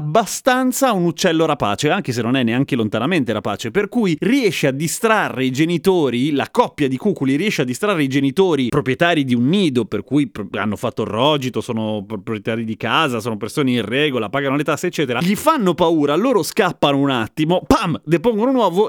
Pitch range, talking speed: 130-185 Hz, 190 wpm